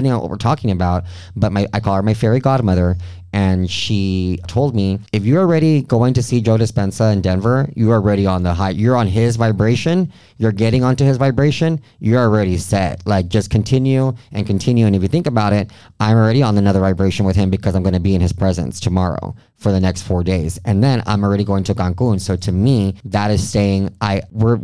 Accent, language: American, English